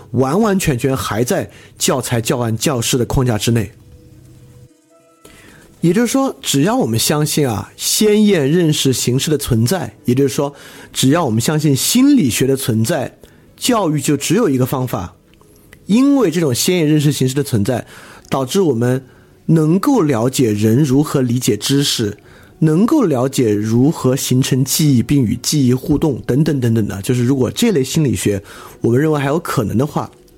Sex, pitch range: male, 115-155 Hz